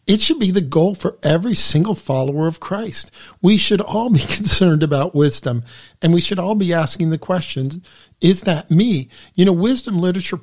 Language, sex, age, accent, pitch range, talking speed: English, male, 50-69, American, 145-180 Hz, 190 wpm